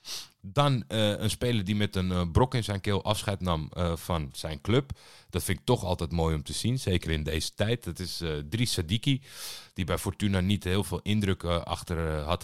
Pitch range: 80-100 Hz